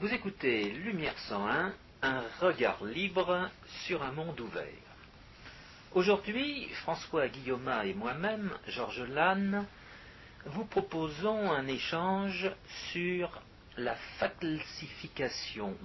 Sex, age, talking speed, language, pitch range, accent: male, 60-79, 95 wpm, French, 125-195 Hz, French